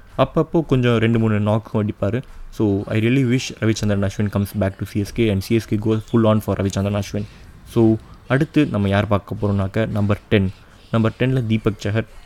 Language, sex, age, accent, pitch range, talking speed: Tamil, male, 20-39, native, 100-115 Hz, 175 wpm